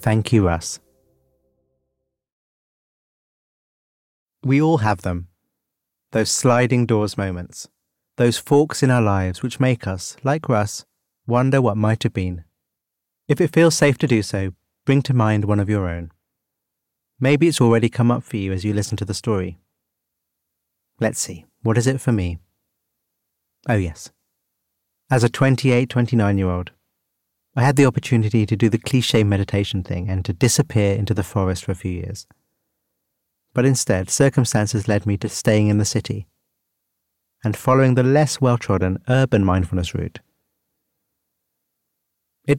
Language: English